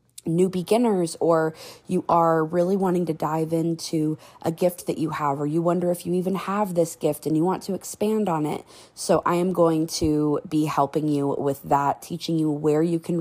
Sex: female